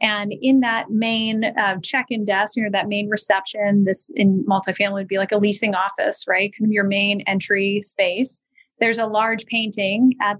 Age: 30-49